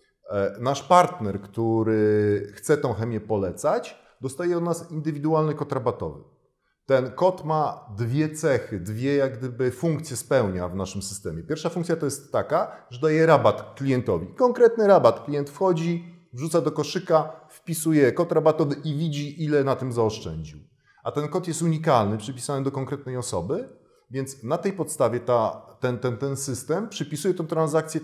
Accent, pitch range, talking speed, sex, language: native, 115-155 Hz, 155 wpm, male, Polish